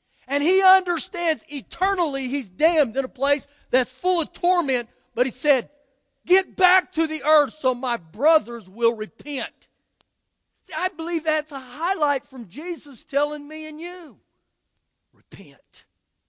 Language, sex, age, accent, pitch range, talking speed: English, male, 50-69, American, 205-310 Hz, 145 wpm